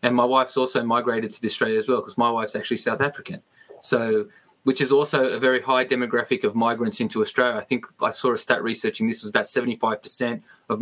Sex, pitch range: male, 120-145 Hz